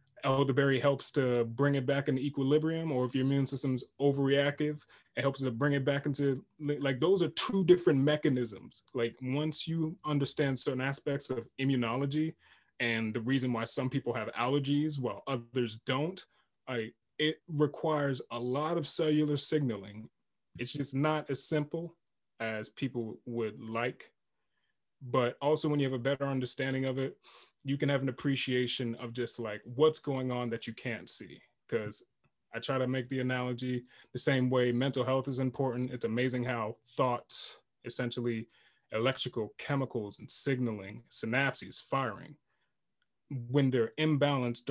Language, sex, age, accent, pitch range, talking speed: English, male, 20-39, American, 120-145 Hz, 155 wpm